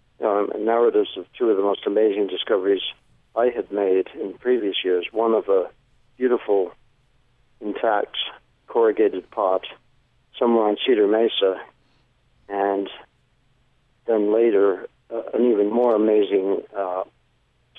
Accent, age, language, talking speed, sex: American, 50-69, English, 120 wpm, male